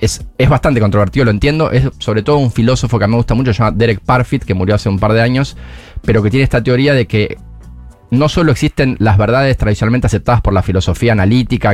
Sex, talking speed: male, 235 wpm